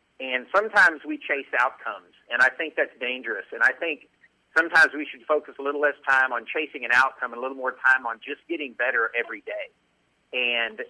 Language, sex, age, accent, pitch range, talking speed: English, male, 50-69, American, 125-165 Hz, 205 wpm